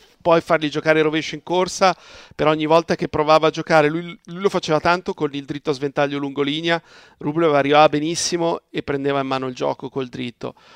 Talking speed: 200 wpm